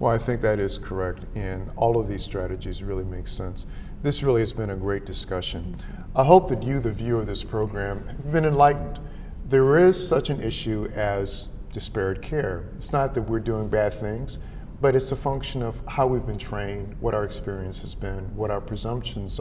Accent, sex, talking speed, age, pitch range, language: American, male, 200 wpm, 50-69, 100-120 Hz, English